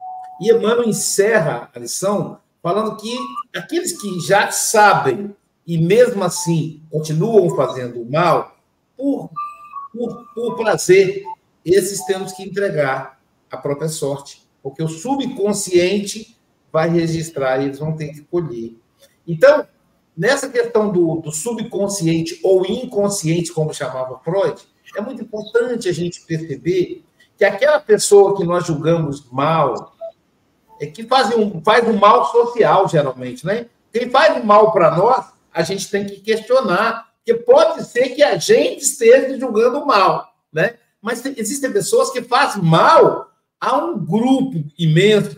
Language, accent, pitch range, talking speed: Portuguese, Brazilian, 165-255 Hz, 140 wpm